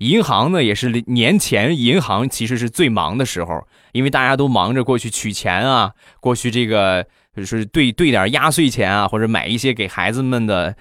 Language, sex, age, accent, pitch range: Chinese, male, 20-39, native, 105-150 Hz